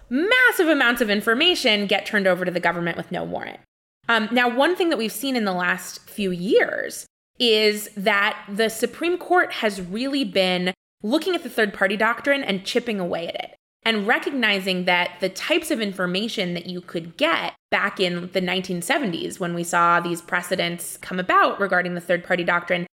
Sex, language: female, English